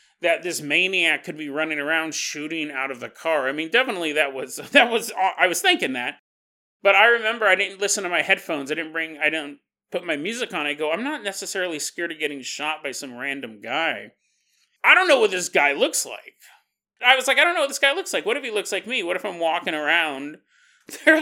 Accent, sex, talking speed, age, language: American, male, 240 wpm, 30-49, English